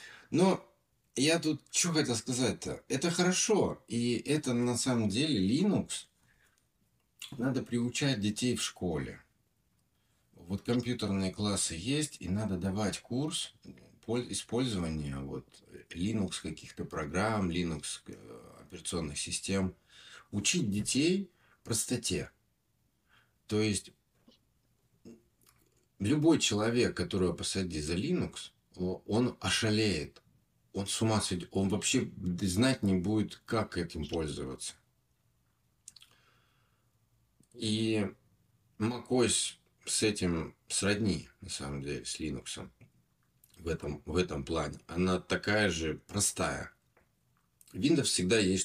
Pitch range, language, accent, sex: 90-115 Hz, Russian, native, male